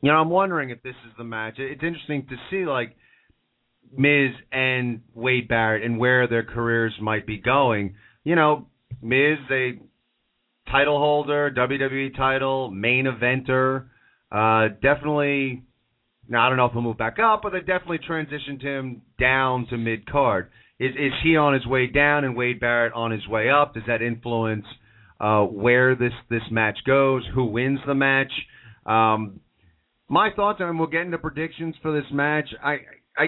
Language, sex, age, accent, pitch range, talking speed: English, male, 30-49, American, 115-145 Hz, 175 wpm